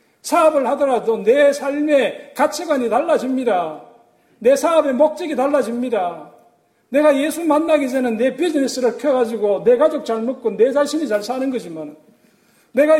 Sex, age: male, 40-59